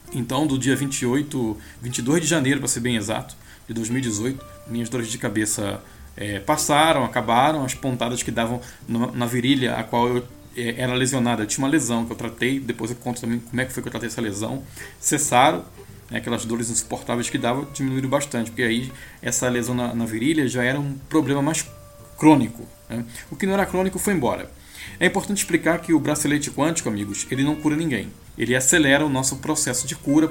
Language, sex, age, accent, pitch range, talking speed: Portuguese, male, 20-39, Brazilian, 120-150 Hz, 200 wpm